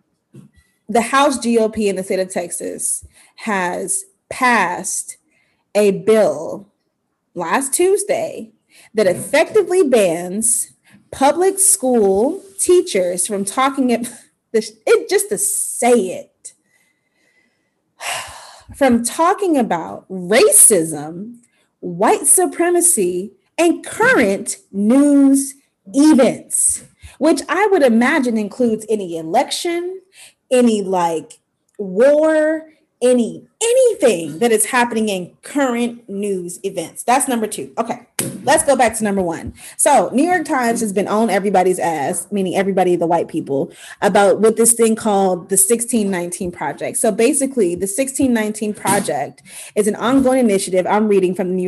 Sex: female